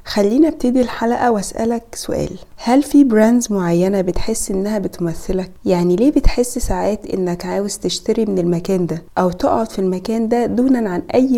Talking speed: 160 wpm